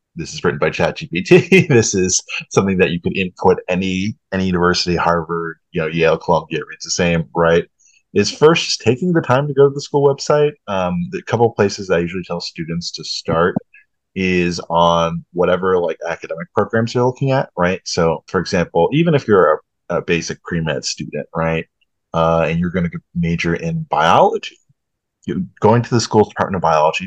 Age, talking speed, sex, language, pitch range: 30-49, 185 wpm, male, English, 85-130 Hz